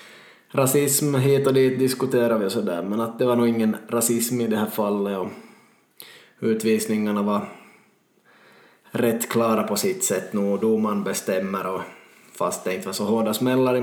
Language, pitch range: Swedish, 110-125 Hz